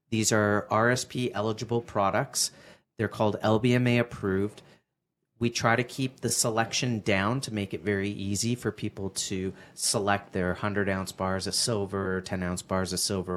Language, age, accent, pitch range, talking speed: English, 30-49, American, 100-125 Hz, 160 wpm